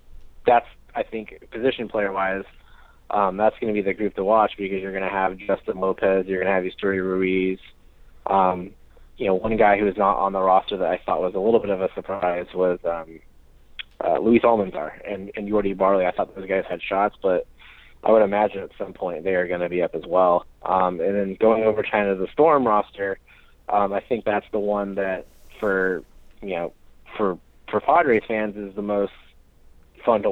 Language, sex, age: English, male, 20-39